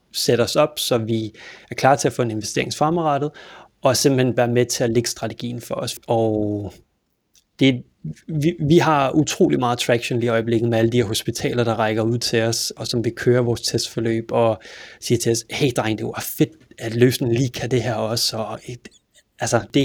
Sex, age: male, 30-49